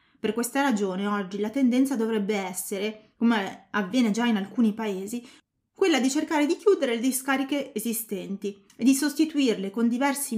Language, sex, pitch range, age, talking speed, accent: Italian, female, 205-275 Hz, 20-39, 155 wpm, native